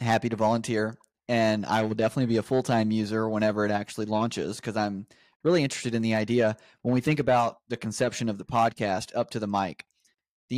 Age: 30-49